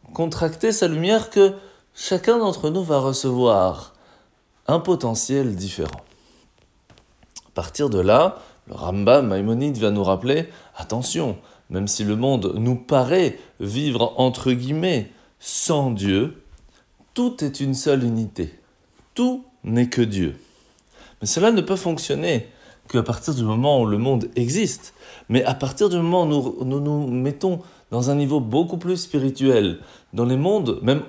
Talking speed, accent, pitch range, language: 150 wpm, French, 110-160 Hz, French